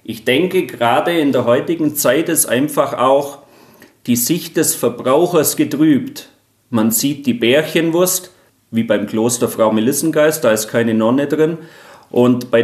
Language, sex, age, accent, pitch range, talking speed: German, male, 40-59, German, 115-165 Hz, 145 wpm